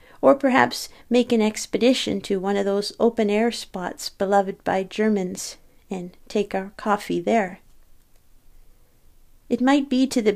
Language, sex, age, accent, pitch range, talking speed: English, female, 40-59, American, 195-240 Hz, 140 wpm